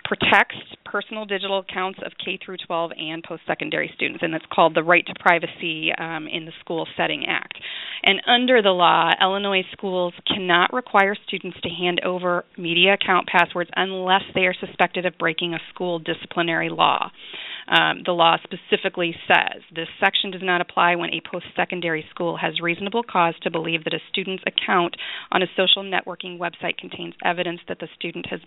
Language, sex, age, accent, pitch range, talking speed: English, female, 30-49, American, 170-195 Hz, 175 wpm